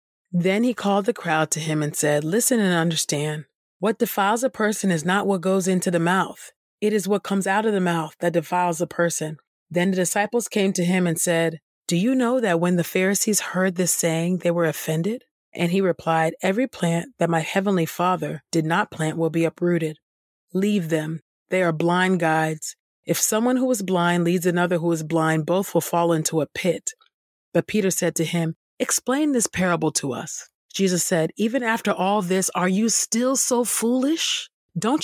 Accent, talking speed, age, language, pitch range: American, 195 wpm, 30-49, English, 170-230 Hz